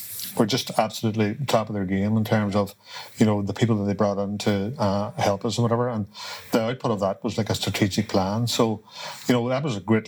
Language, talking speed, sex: English, 245 wpm, male